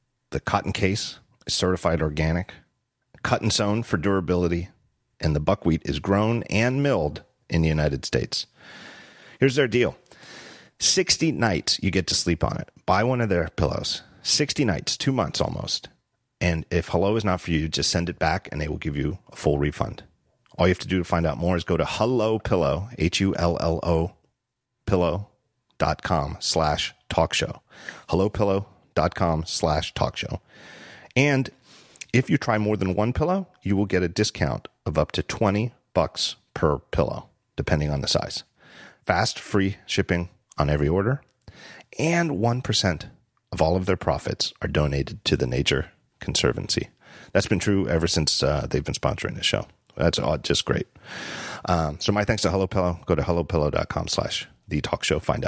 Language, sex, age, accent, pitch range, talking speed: English, male, 40-59, American, 85-110 Hz, 180 wpm